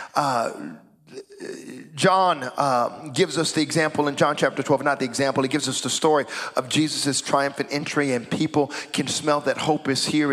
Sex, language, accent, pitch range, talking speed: male, English, American, 140-195 Hz, 180 wpm